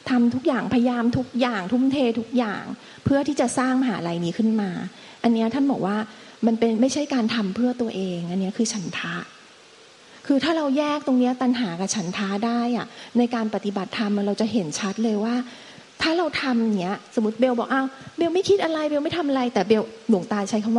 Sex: female